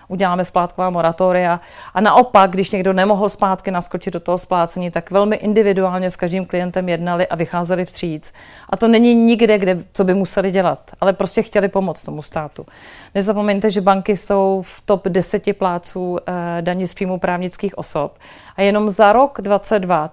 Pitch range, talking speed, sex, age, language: 180-200 Hz, 165 wpm, female, 40-59, Czech